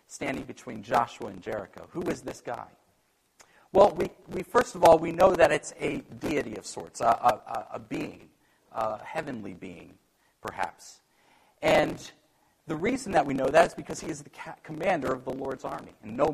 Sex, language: male, English